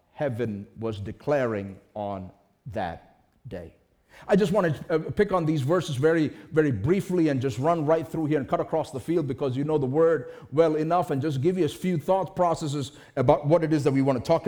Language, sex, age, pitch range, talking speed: English, male, 50-69, 145-190 Hz, 215 wpm